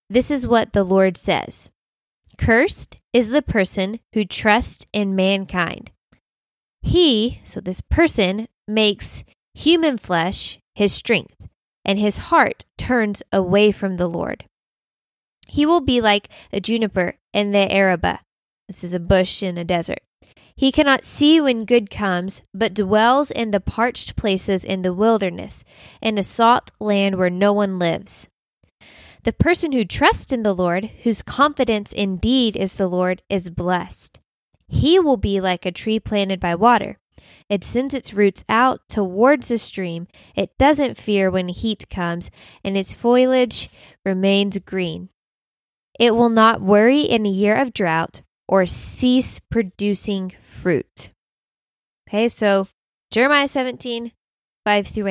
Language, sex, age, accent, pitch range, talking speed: English, female, 20-39, American, 190-245 Hz, 145 wpm